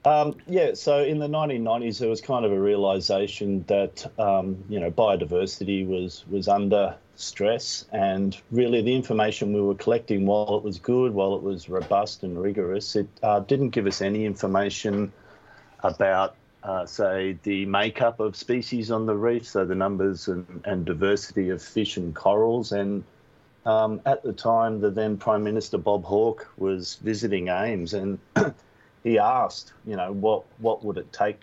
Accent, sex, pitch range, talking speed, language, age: Australian, male, 95-110 Hz, 170 wpm, English, 40-59